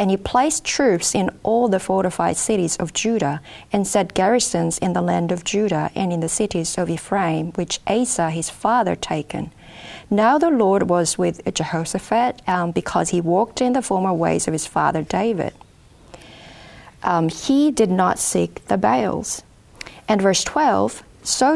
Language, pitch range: English, 170-225 Hz